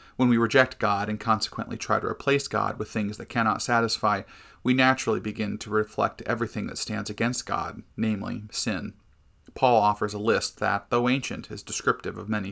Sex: male